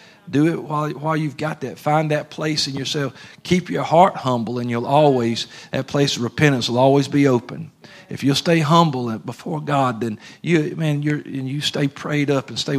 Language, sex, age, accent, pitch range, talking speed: English, male, 50-69, American, 120-145 Hz, 205 wpm